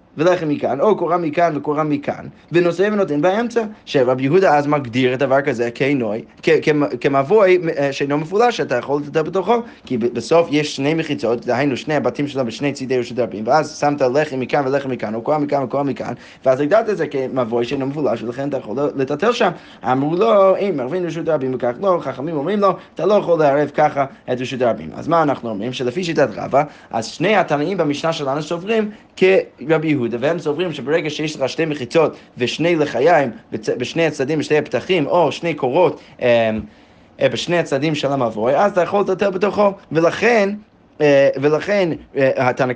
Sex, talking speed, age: male, 150 wpm, 20-39